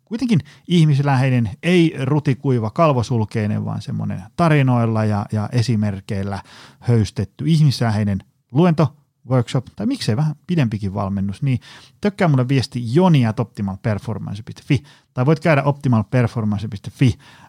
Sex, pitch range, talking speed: male, 105-140 Hz, 105 wpm